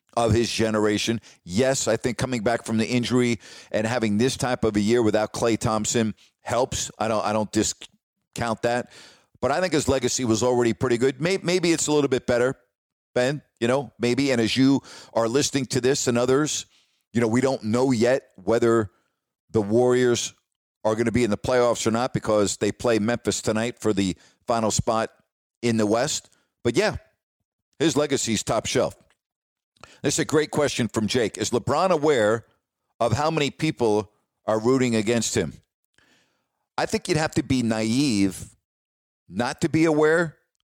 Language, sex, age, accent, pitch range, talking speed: English, male, 50-69, American, 110-135 Hz, 180 wpm